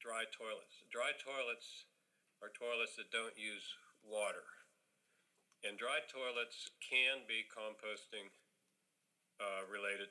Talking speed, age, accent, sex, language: 105 wpm, 50-69, American, male, English